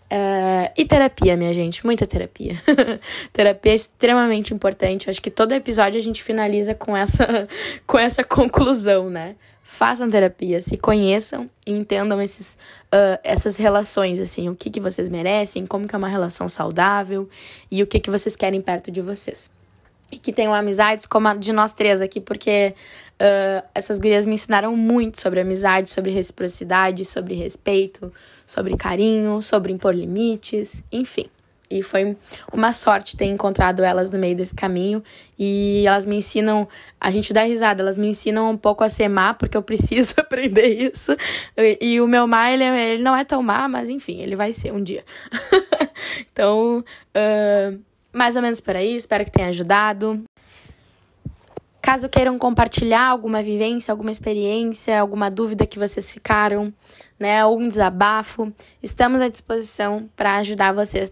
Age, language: 10-29, Portuguese